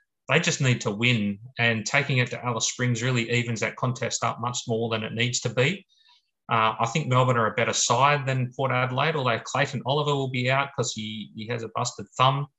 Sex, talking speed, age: male, 225 wpm, 30-49